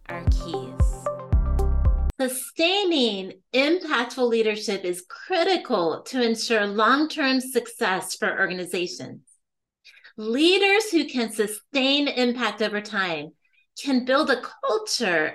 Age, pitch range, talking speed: 30-49, 215-290 Hz, 100 wpm